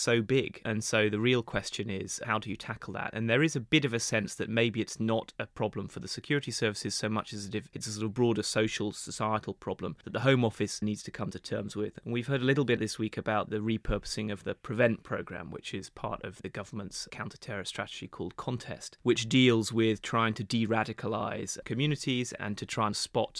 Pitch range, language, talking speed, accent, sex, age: 105-120 Hz, English, 235 wpm, British, male, 30-49